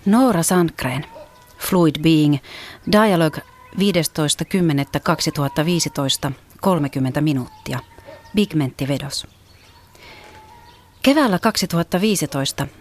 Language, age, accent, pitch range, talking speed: Finnish, 40-59, native, 140-170 Hz, 55 wpm